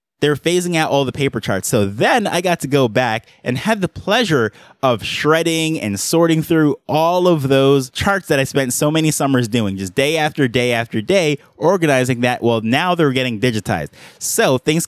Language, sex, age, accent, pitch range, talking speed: English, male, 20-39, American, 115-155 Hz, 200 wpm